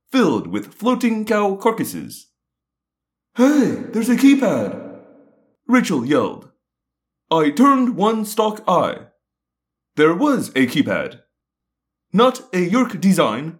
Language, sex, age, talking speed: English, male, 30-49, 105 wpm